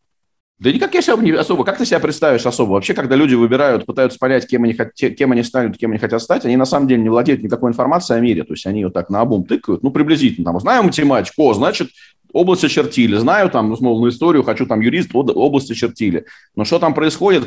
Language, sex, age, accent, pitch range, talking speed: Russian, male, 30-49, native, 100-135 Hz, 225 wpm